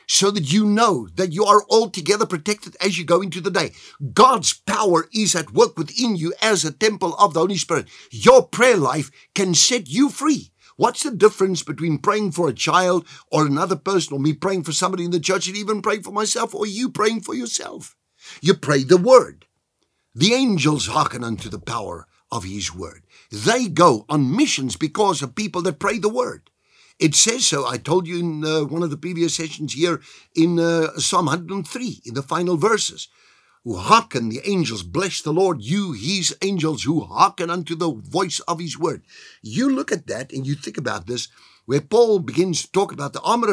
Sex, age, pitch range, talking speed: male, 50-69, 145-200 Hz, 200 wpm